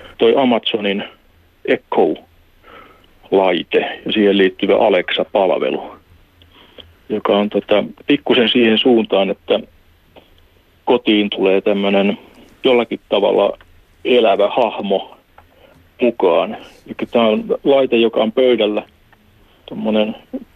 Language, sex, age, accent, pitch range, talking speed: Finnish, male, 40-59, native, 100-120 Hz, 80 wpm